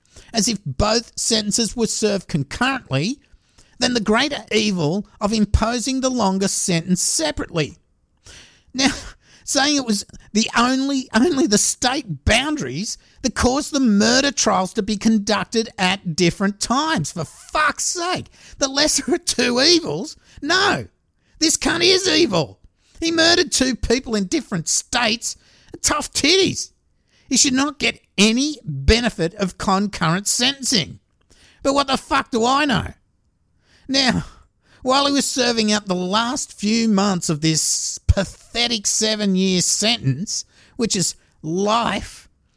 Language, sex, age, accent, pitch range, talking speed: English, male, 50-69, Australian, 190-260 Hz, 135 wpm